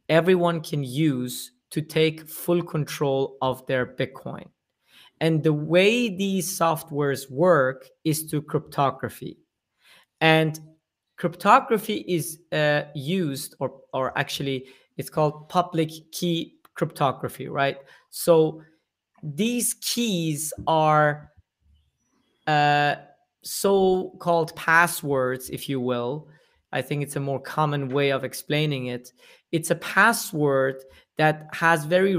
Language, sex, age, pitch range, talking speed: English, male, 30-49, 140-165 Hz, 110 wpm